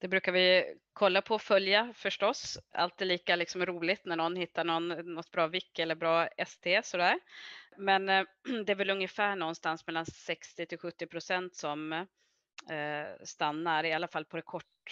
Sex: female